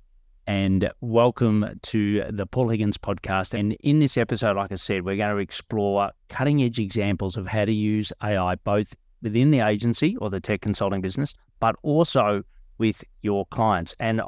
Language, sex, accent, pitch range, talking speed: English, male, Australian, 95-115 Hz, 170 wpm